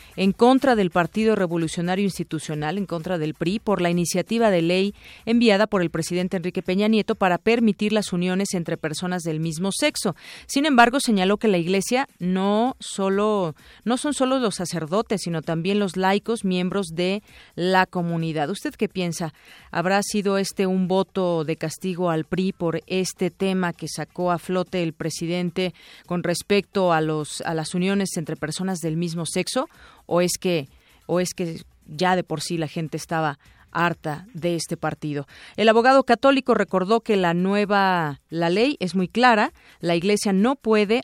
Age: 40-59